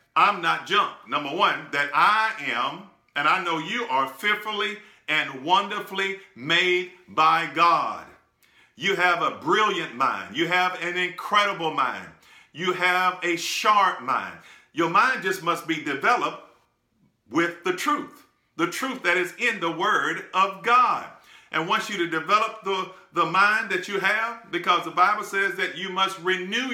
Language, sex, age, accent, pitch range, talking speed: English, male, 50-69, American, 170-215 Hz, 160 wpm